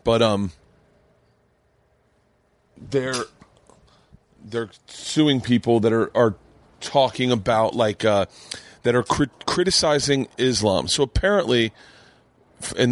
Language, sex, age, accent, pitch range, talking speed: English, male, 30-49, American, 110-130 Hz, 100 wpm